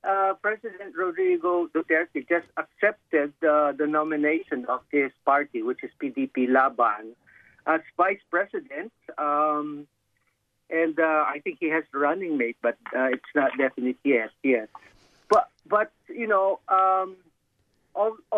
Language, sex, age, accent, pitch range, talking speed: English, male, 50-69, Filipino, 145-235 Hz, 135 wpm